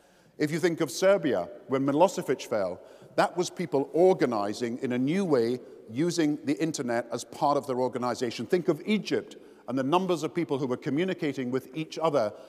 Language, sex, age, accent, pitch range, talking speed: English, male, 50-69, British, 120-160 Hz, 185 wpm